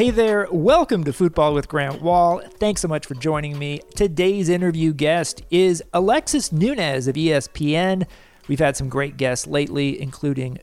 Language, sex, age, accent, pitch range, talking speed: English, male, 40-59, American, 135-185 Hz, 165 wpm